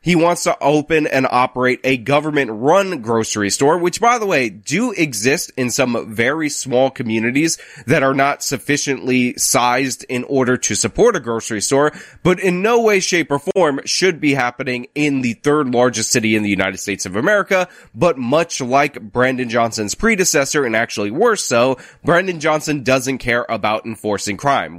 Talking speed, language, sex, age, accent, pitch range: 170 wpm, English, male, 20-39, American, 115-155 Hz